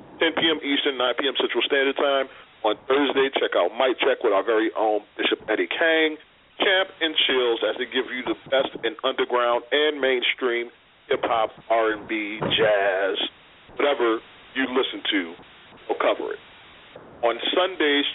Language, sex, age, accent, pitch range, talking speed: English, male, 40-59, American, 125-160 Hz, 150 wpm